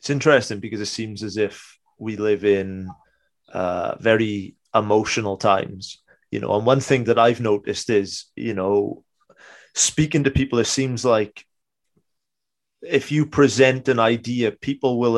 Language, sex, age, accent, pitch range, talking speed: English, male, 30-49, British, 105-130 Hz, 150 wpm